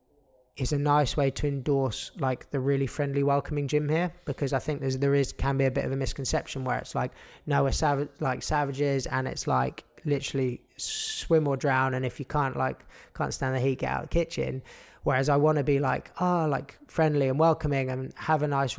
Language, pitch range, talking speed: English, 125-145 Hz, 215 wpm